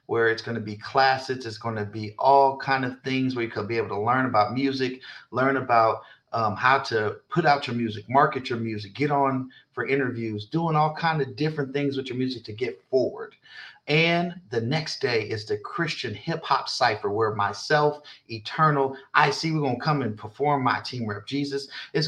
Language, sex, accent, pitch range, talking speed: English, male, American, 115-145 Hz, 200 wpm